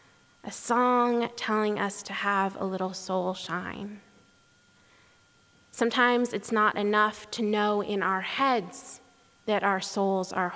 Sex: female